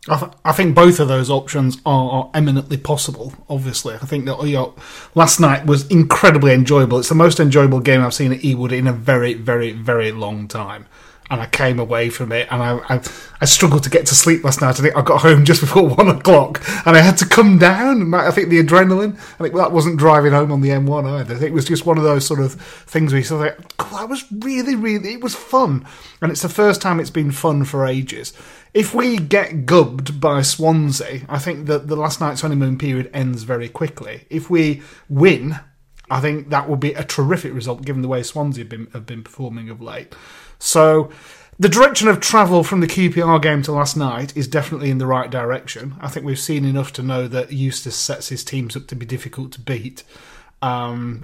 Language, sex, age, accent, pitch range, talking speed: English, male, 30-49, British, 130-160 Hz, 225 wpm